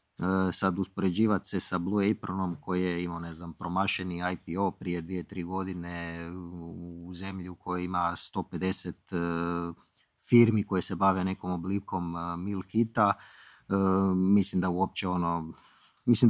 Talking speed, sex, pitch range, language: 120 wpm, male, 90-105 Hz, Croatian